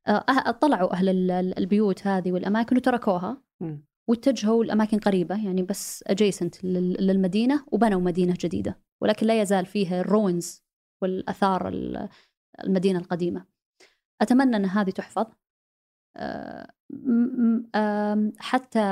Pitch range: 185-220 Hz